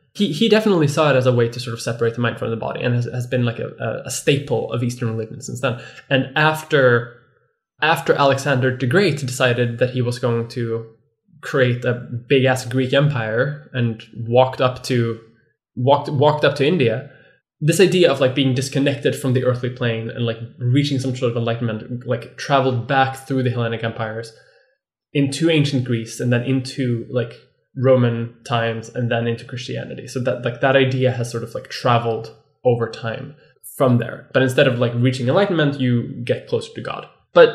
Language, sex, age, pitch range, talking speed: English, male, 10-29, 120-150 Hz, 195 wpm